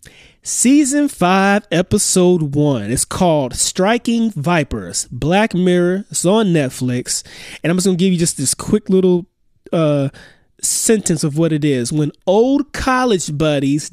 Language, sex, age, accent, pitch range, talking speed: English, male, 20-39, American, 140-205 Hz, 145 wpm